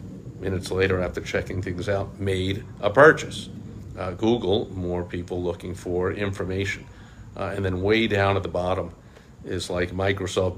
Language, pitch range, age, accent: English, 90-100 Hz, 50-69, American